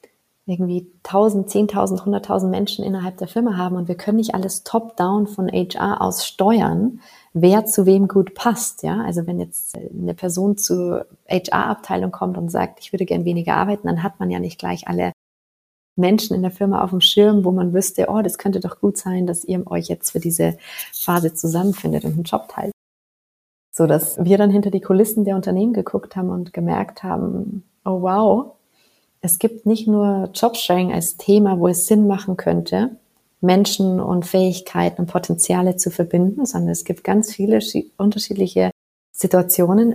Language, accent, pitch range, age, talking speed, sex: German, German, 175-205 Hz, 30-49, 175 wpm, female